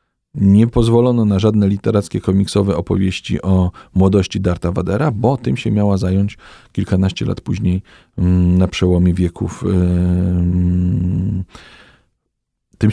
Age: 40-59